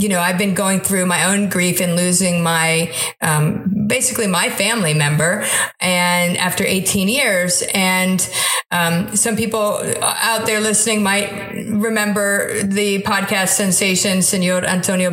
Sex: female